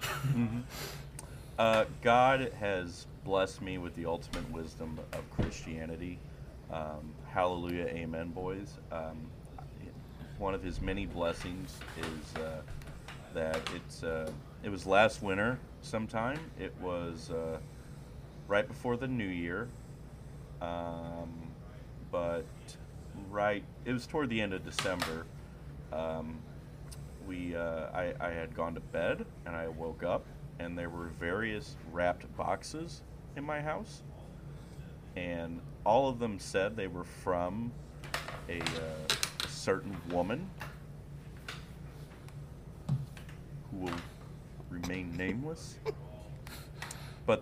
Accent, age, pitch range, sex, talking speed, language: American, 30-49, 85-125 Hz, male, 115 wpm, English